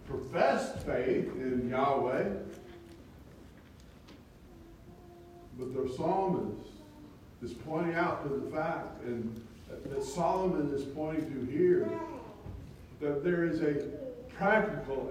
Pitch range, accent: 125-185 Hz, American